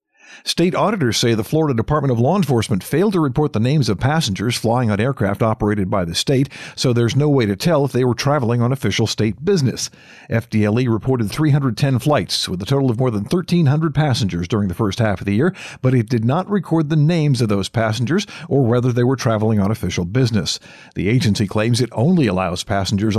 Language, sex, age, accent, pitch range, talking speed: English, male, 50-69, American, 110-140 Hz, 210 wpm